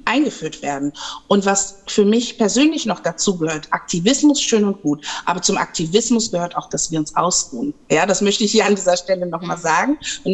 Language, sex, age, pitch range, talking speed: German, female, 50-69, 180-230 Hz, 205 wpm